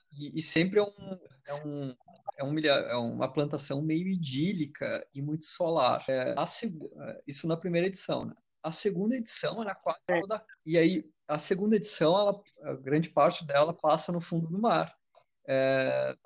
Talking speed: 175 wpm